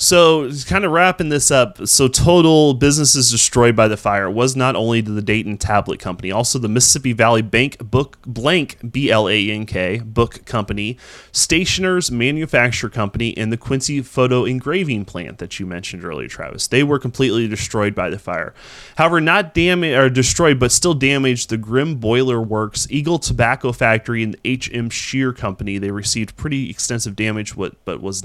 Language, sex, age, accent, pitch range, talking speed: English, male, 30-49, American, 105-135 Hz, 165 wpm